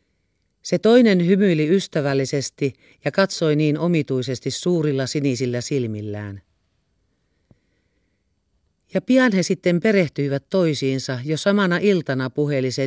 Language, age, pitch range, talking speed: Finnish, 50-69, 125-170 Hz, 105 wpm